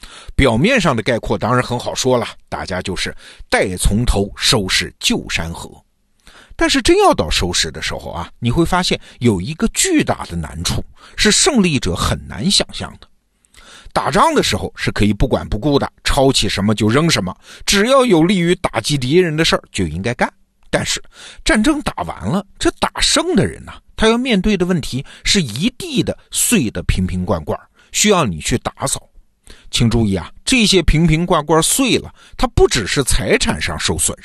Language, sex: Chinese, male